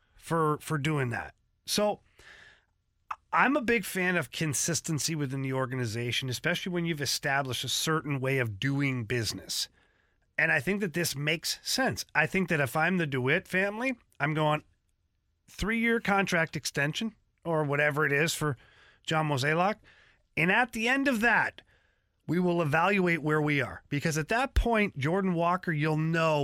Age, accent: 40-59, American